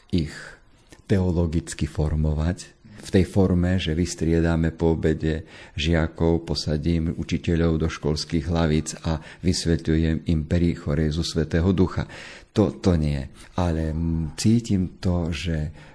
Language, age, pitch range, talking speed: Slovak, 50-69, 80-90 Hz, 105 wpm